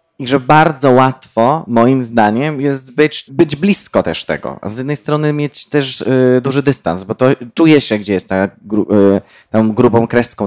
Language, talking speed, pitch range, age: Polish, 185 wpm, 105-135 Hz, 20-39